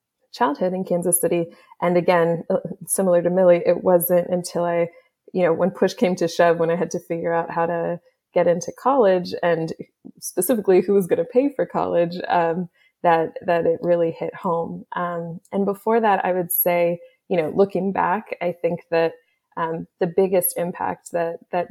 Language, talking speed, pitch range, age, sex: English, 185 wpm, 165-180 Hz, 20-39, female